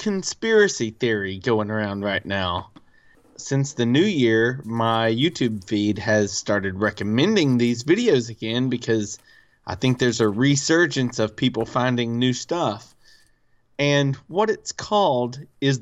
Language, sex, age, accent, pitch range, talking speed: English, male, 30-49, American, 115-155 Hz, 135 wpm